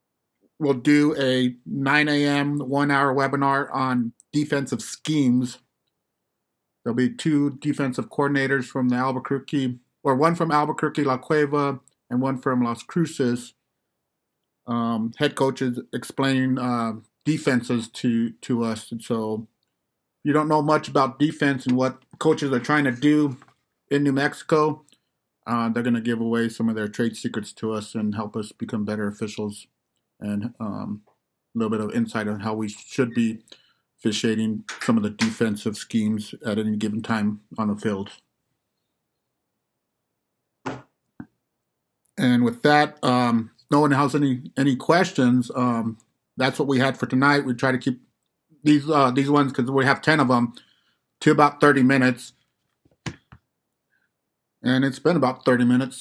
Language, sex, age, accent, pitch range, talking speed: English, male, 50-69, American, 115-140 Hz, 150 wpm